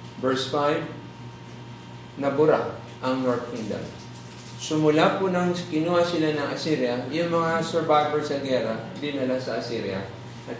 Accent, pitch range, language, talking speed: native, 105-150 Hz, Filipino, 130 wpm